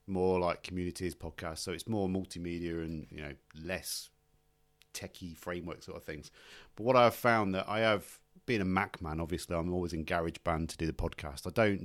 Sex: male